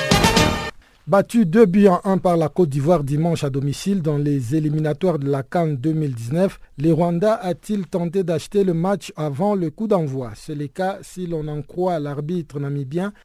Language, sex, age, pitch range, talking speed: French, male, 50-69, 150-190 Hz, 185 wpm